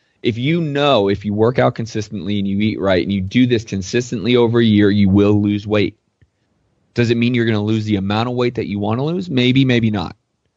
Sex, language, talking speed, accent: male, English, 245 wpm, American